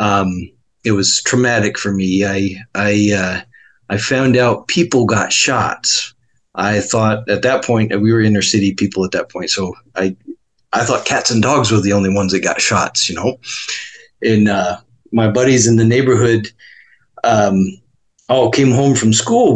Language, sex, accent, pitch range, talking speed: English, male, American, 105-125 Hz, 175 wpm